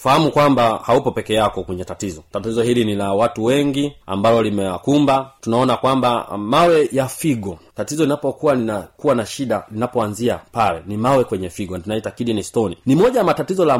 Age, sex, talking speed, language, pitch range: 30-49, male, 185 wpm, Swahili, 100-140 Hz